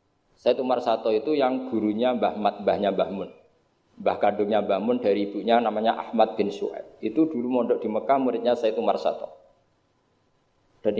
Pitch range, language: 125-195 Hz, Indonesian